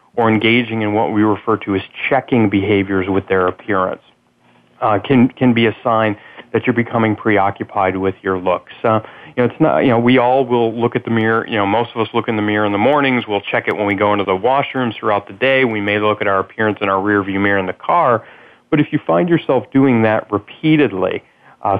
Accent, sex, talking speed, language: American, male, 240 wpm, English